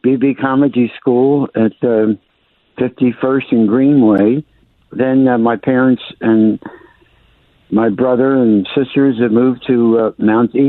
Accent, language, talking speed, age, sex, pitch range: American, English, 130 wpm, 60-79, male, 110-130 Hz